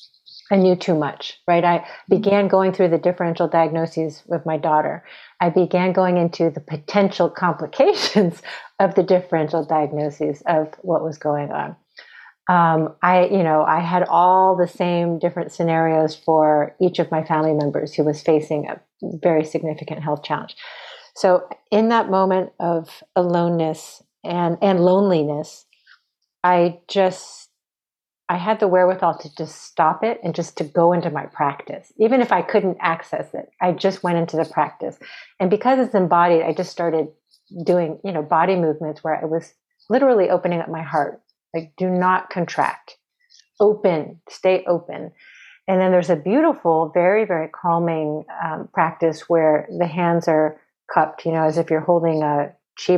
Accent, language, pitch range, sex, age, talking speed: American, English, 160-185 Hz, female, 40-59, 165 wpm